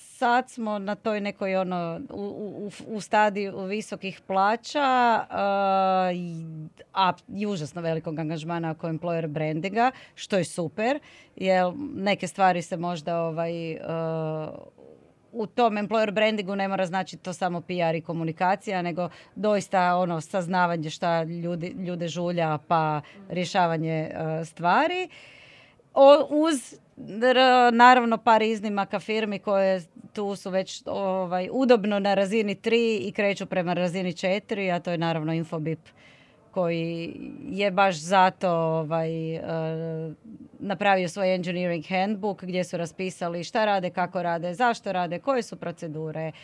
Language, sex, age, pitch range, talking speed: Croatian, female, 30-49, 170-210 Hz, 130 wpm